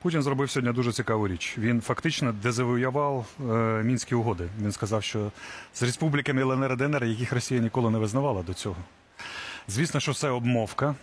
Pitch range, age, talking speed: 110-135 Hz, 30-49, 165 wpm